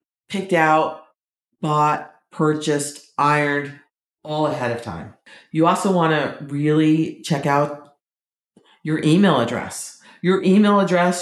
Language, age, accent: English, 40-59, American